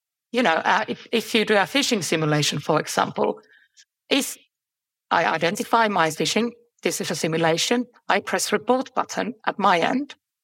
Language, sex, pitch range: English, female, 180-245 Hz